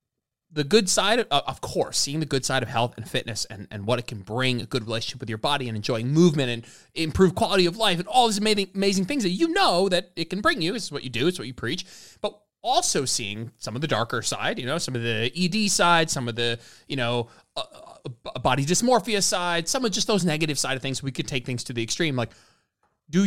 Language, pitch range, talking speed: English, 125-180 Hz, 255 wpm